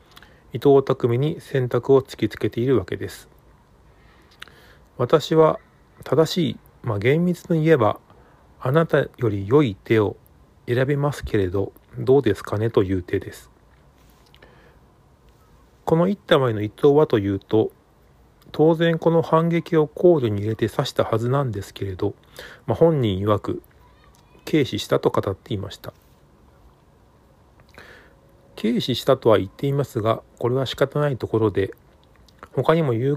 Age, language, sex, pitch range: 40-59, Japanese, male, 100-150 Hz